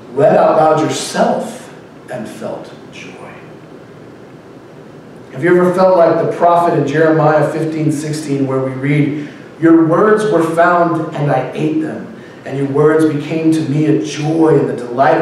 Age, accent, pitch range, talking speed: 40-59, American, 135-160 Hz, 160 wpm